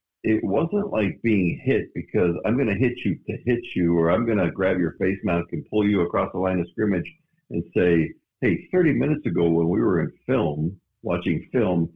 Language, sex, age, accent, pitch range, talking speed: English, male, 60-79, American, 85-110 Hz, 215 wpm